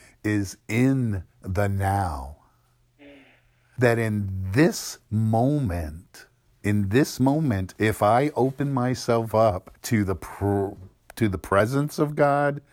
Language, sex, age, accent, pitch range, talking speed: English, male, 50-69, American, 100-130 Hz, 110 wpm